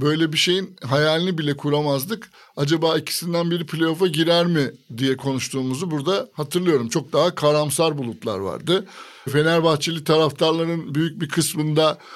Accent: native